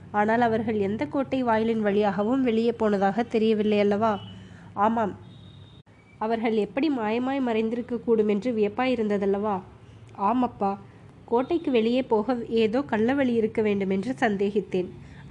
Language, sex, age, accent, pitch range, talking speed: Tamil, female, 20-39, native, 200-240 Hz, 115 wpm